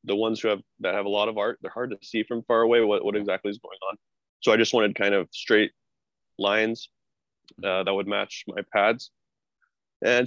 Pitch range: 100-110 Hz